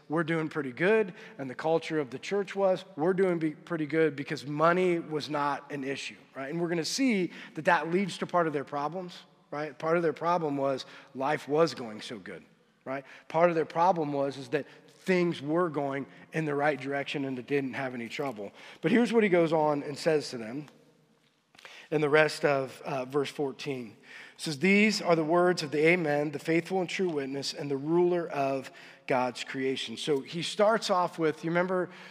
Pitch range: 145-170 Hz